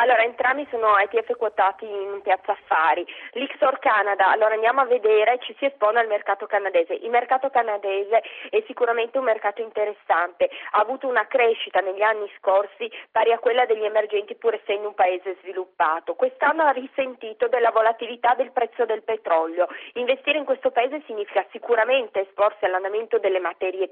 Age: 30-49